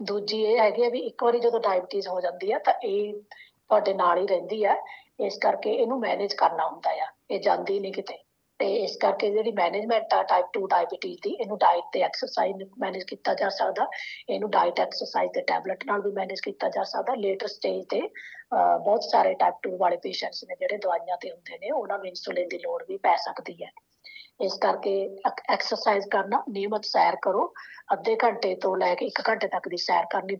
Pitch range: 185-280 Hz